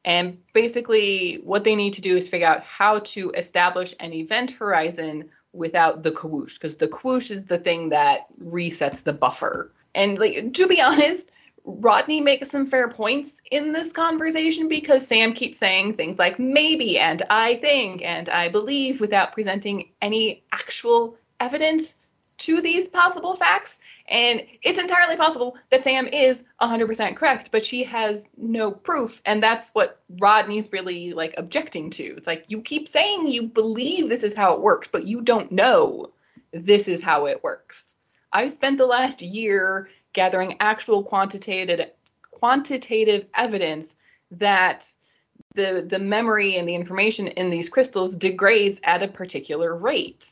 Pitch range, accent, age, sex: 190-265 Hz, American, 20-39, female